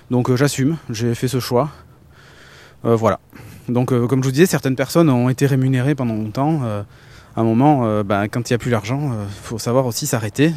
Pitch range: 120-150 Hz